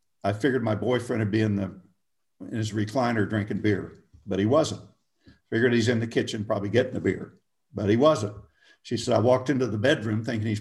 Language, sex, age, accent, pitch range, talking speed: English, male, 50-69, American, 105-140 Hz, 210 wpm